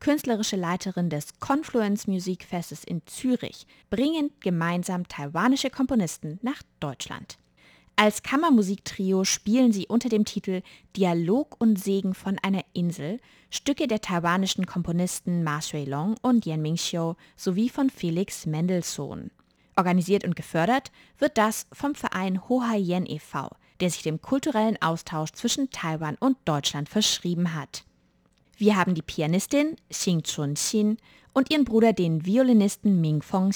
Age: 20-39